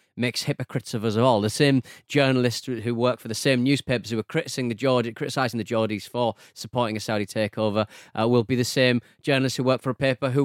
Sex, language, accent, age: male, English, British, 30-49